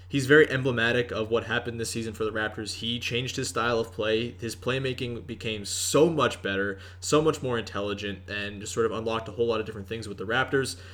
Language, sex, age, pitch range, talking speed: English, male, 20-39, 105-130 Hz, 225 wpm